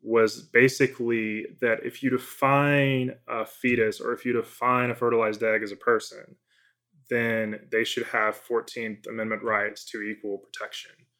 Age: 20-39